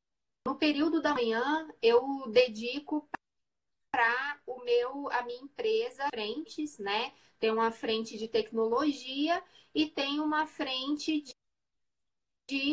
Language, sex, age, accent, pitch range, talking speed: Portuguese, female, 20-39, Brazilian, 230-295 Hz, 110 wpm